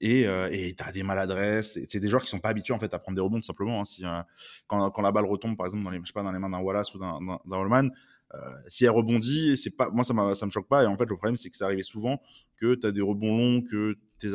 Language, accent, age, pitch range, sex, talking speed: French, French, 20-39, 95-120 Hz, male, 325 wpm